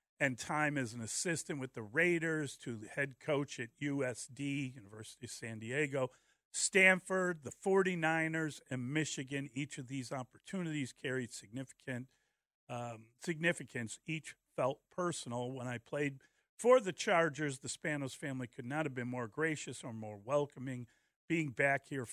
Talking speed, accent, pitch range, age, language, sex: 150 wpm, American, 125-155 Hz, 50-69, English, male